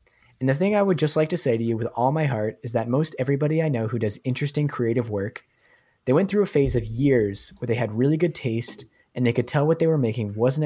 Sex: male